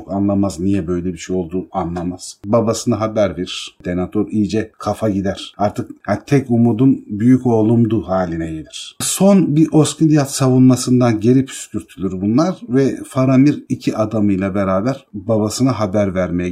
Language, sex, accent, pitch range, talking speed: Turkish, male, native, 95-125 Hz, 130 wpm